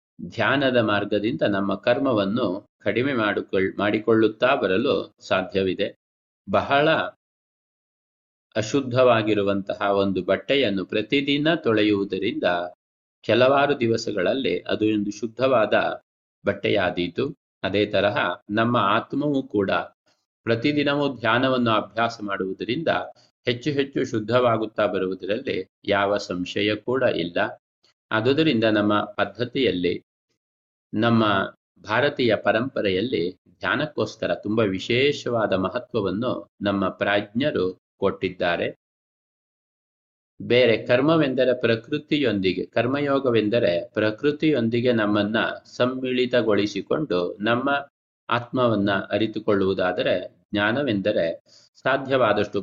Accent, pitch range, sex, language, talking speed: native, 100-125 Hz, male, Kannada, 70 wpm